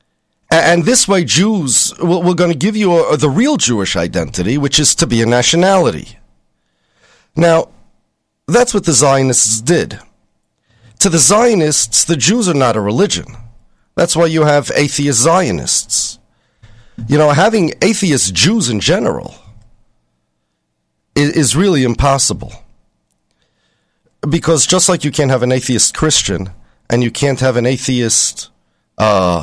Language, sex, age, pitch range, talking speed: English, male, 40-59, 110-170 Hz, 135 wpm